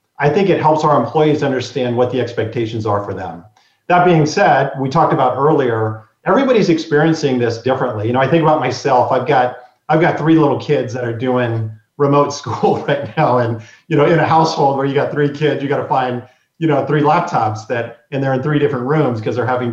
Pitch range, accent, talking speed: 120-155 Hz, American, 220 wpm